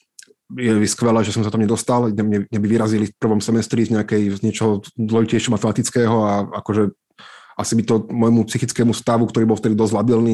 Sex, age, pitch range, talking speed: male, 20-39, 110-135 Hz, 205 wpm